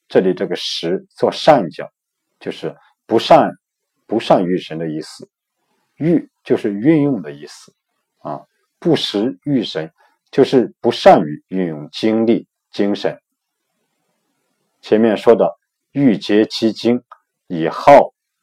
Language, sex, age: Chinese, male, 50-69